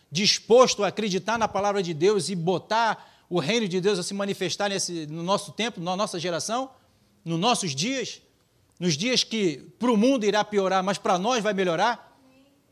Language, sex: Portuguese, male